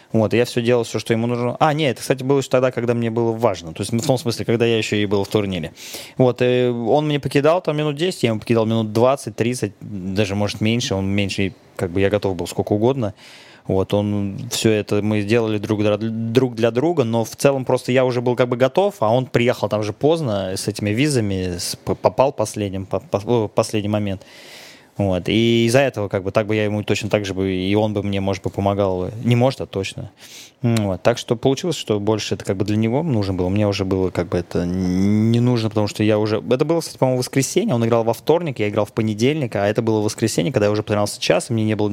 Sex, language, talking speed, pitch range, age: male, Russian, 235 wpm, 100-125 Hz, 20-39